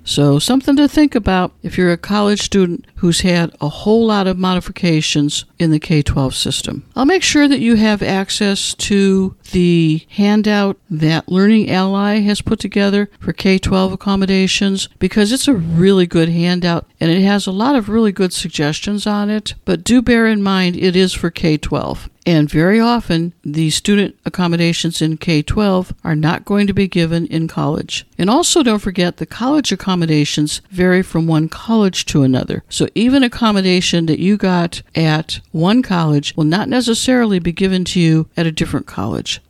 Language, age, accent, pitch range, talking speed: English, 60-79, American, 165-205 Hz, 175 wpm